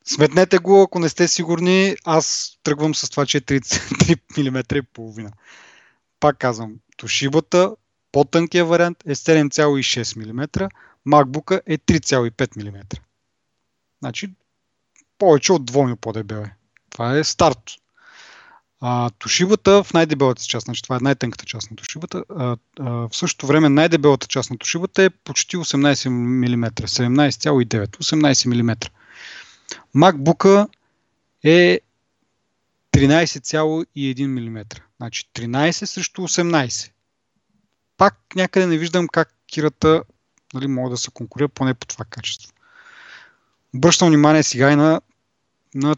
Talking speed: 125 wpm